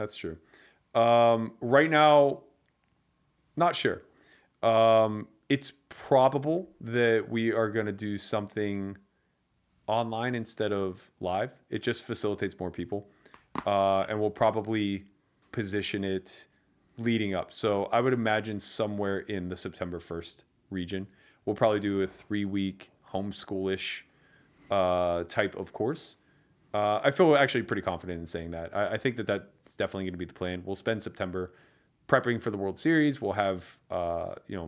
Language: English